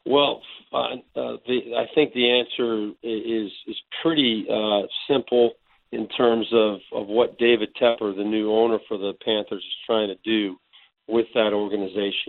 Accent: American